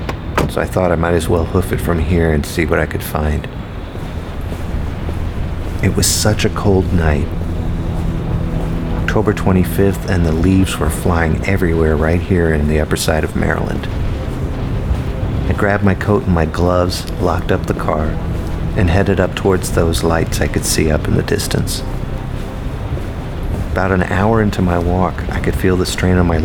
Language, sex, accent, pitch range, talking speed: English, male, American, 85-95 Hz, 170 wpm